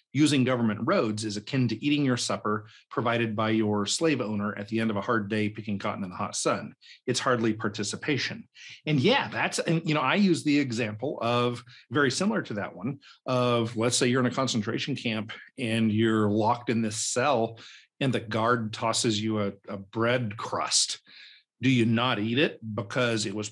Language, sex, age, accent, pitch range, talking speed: English, male, 40-59, American, 110-130 Hz, 195 wpm